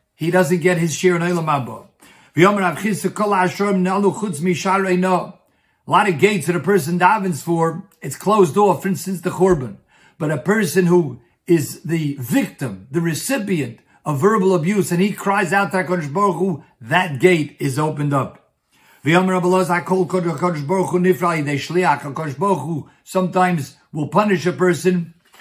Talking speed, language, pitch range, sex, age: 120 wpm, English, 150-190 Hz, male, 50-69